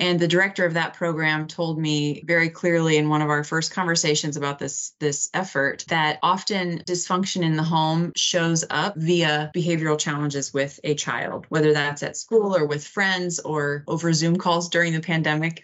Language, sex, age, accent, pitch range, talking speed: English, female, 30-49, American, 145-170 Hz, 185 wpm